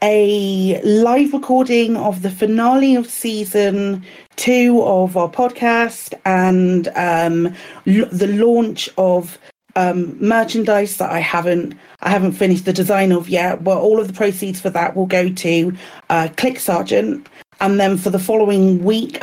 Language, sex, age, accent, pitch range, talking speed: English, female, 40-59, British, 180-205 Hz, 150 wpm